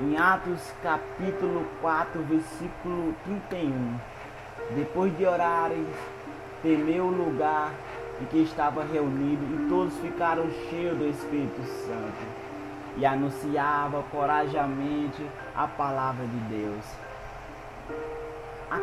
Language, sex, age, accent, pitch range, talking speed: Portuguese, male, 20-39, Brazilian, 125-160 Hz, 100 wpm